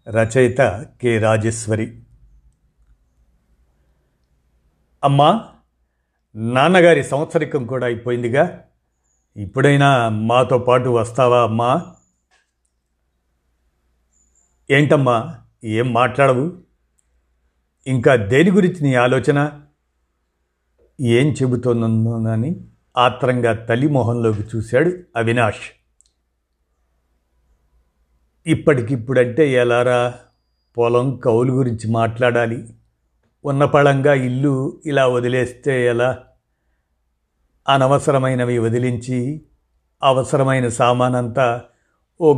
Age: 50-69